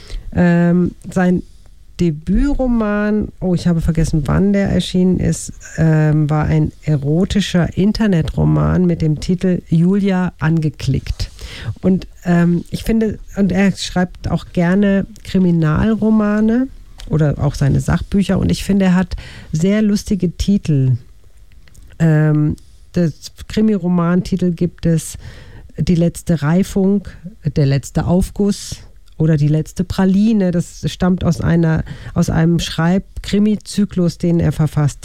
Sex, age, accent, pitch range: female, 50-69, German, 155-195 Hz